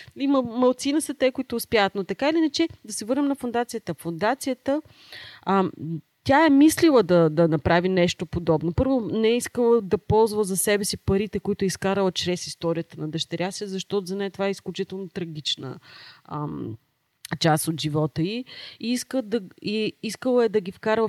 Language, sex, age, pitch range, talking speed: Bulgarian, female, 30-49, 165-215 Hz, 175 wpm